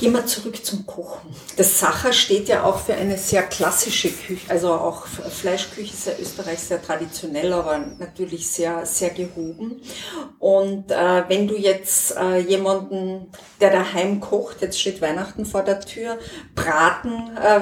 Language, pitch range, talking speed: German, 180-210 Hz, 155 wpm